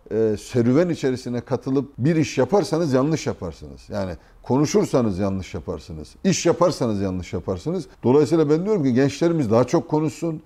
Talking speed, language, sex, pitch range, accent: 145 wpm, Turkish, male, 115-150 Hz, native